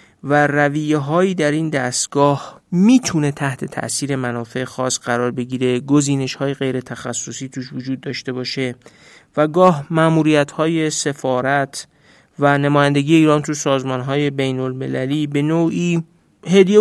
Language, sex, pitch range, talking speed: Persian, male, 130-155 Hz, 130 wpm